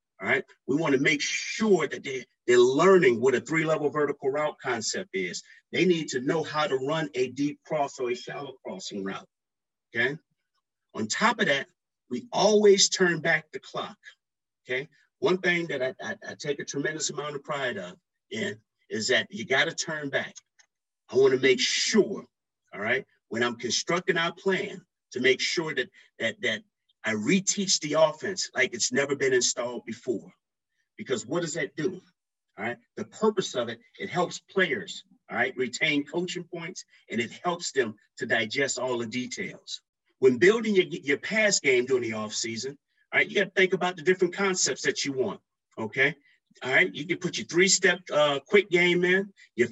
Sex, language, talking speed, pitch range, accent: male, English, 185 wpm, 160-200 Hz, American